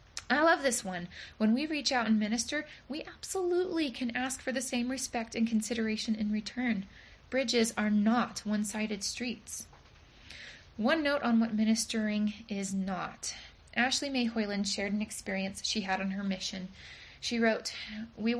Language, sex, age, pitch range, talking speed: English, female, 20-39, 195-235 Hz, 155 wpm